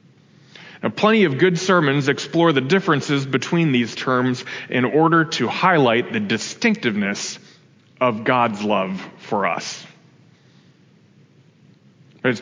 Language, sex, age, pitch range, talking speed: English, male, 30-49, 120-165 Hz, 105 wpm